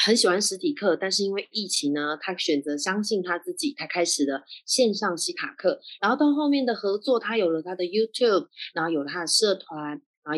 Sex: female